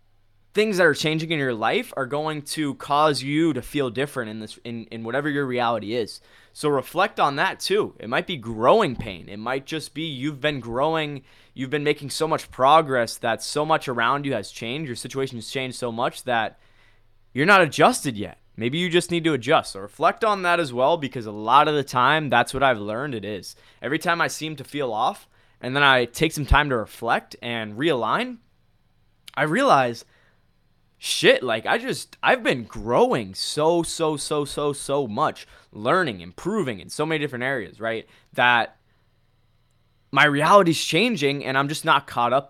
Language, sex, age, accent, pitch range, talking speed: English, male, 20-39, American, 115-160 Hz, 195 wpm